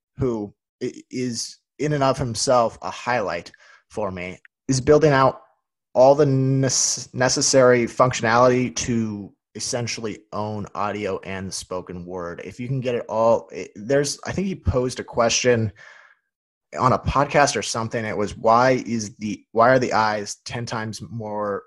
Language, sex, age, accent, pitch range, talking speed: English, male, 30-49, American, 110-135 Hz, 155 wpm